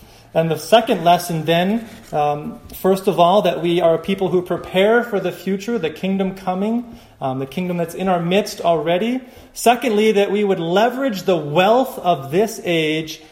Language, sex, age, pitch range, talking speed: English, male, 30-49, 165-215 Hz, 175 wpm